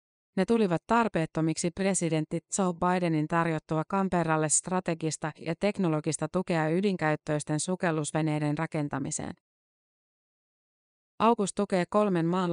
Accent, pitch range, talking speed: native, 155-185 Hz, 90 wpm